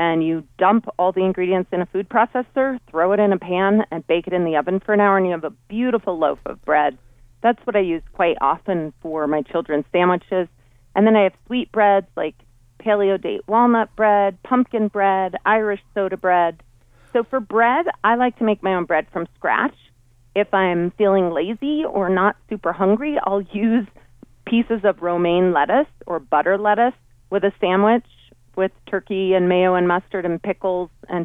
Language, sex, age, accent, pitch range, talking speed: English, female, 40-59, American, 165-210 Hz, 190 wpm